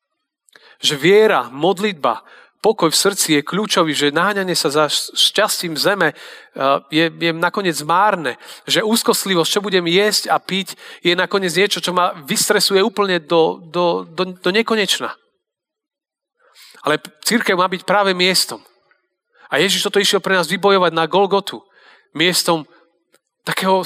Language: Slovak